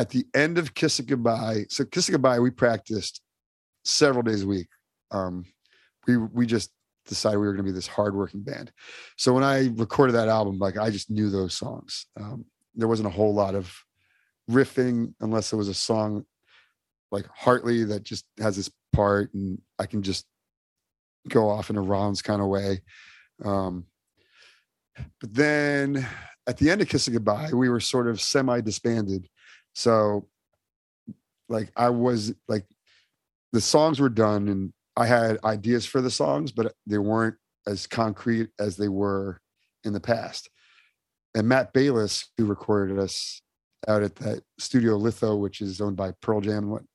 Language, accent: English, American